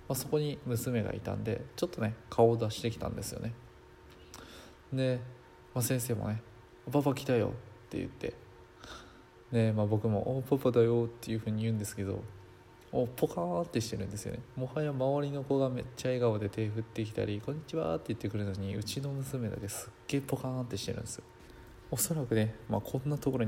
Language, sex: Japanese, male